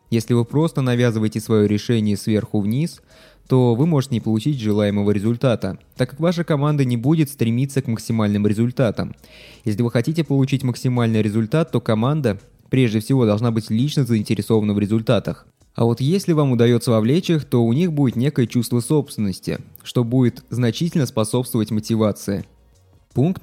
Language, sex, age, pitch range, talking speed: Russian, male, 20-39, 110-135 Hz, 155 wpm